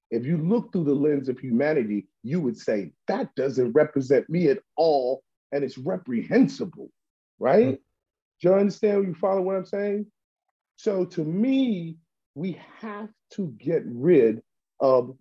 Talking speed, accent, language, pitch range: 150 wpm, American, English, 140-210 Hz